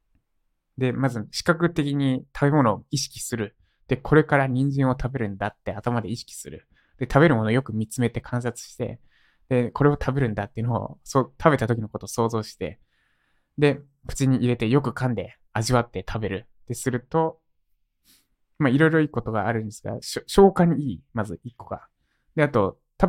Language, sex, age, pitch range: Japanese, male, 20-39, 110-145 Hz